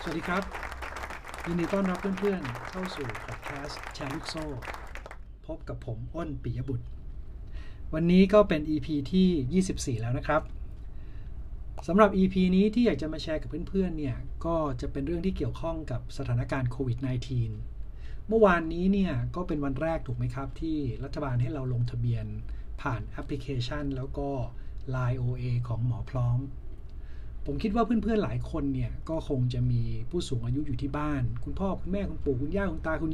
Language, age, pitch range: Thai, 60-79, 120-160 Hz